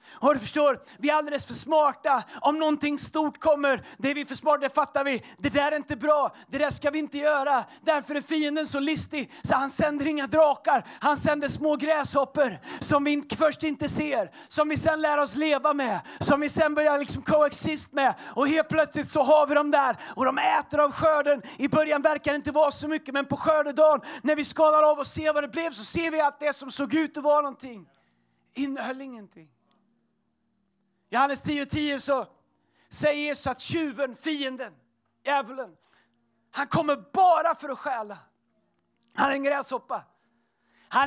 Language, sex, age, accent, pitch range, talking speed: Swedish, male, 30-49, native, 275-305 Hz, 195 wpm